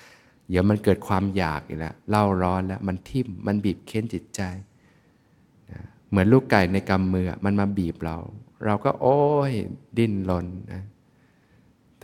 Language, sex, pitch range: Thai, male, 85-105 Hz